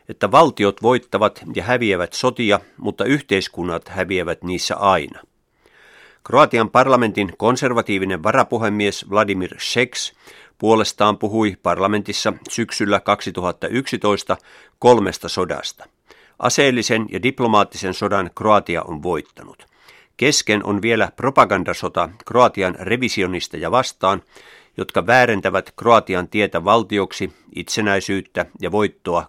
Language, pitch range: Finnish, 95-115 Hz